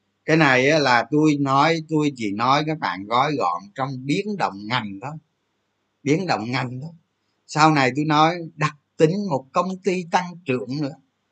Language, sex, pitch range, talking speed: Vietnamese, male, 130-205 Hz, 175 wpm